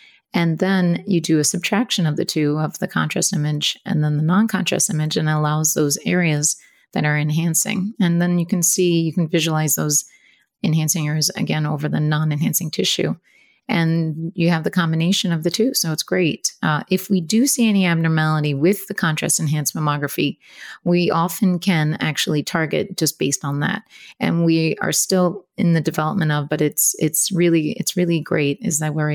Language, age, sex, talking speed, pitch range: English, 30-49, female, 185 wpm, 155-180 Hz